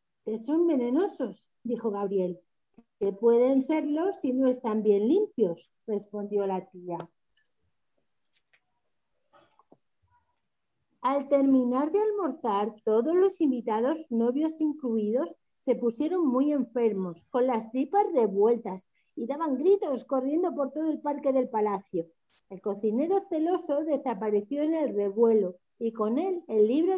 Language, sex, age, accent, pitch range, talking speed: Spanish, female, 40-59, Spanish, 210-295 Hz, 120 wpm